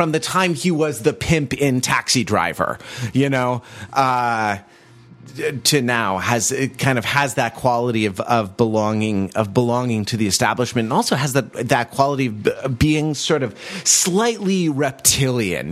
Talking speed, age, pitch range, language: 160 wpm, 30-49, 120-150 Hz, English